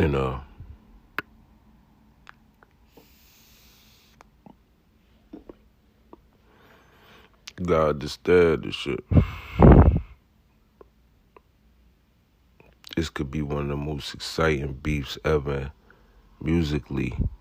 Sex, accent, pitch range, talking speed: male, American, 70-90 Hz, 60 wpm